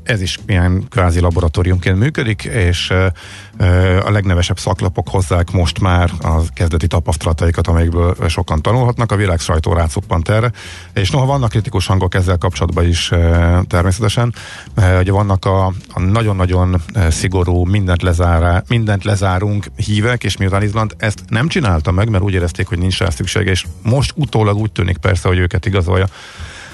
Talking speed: 155 wpm